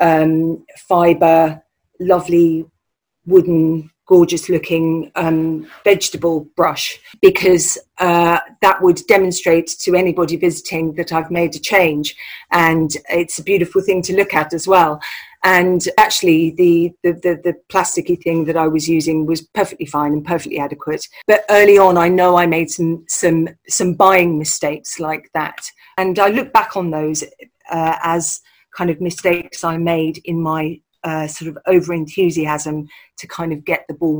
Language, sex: English, female